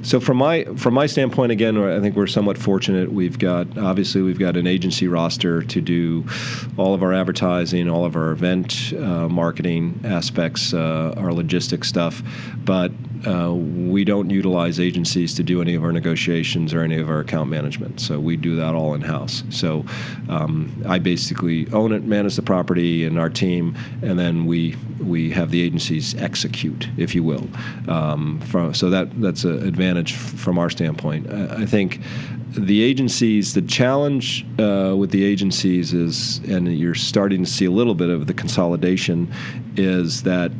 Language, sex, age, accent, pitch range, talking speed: English, male, 40-59, American, 85-120 Hz, 180 wpm